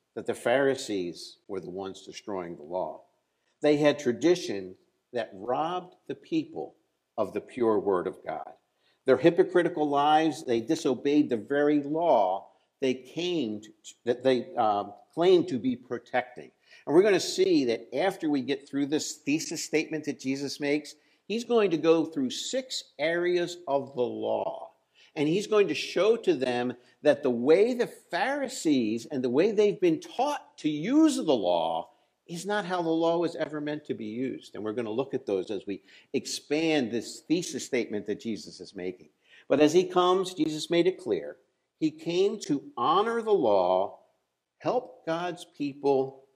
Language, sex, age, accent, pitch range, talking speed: English, male, 60-79, American, 130-210 Hz, 170 wpm